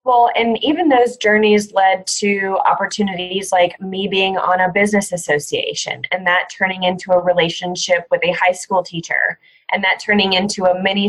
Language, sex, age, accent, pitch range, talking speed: English, female, 20-39, American, 170-200 Hz, 175 wpm